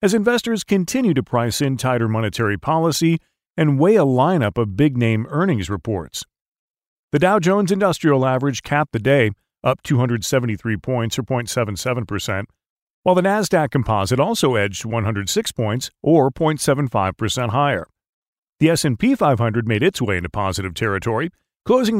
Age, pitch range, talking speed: 40-59, 115-160 Hz, 140 wpm